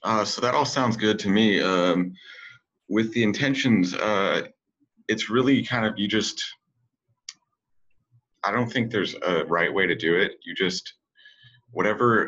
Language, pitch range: English, 90-145 Hz